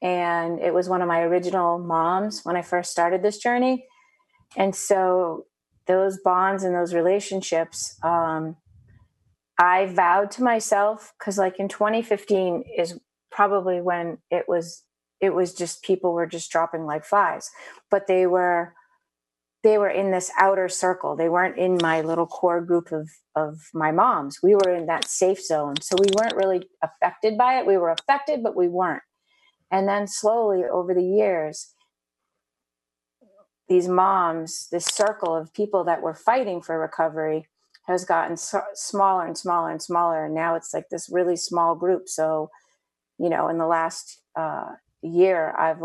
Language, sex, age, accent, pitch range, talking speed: English, female, 30-49, American, 165-195 Hz, 165 wpm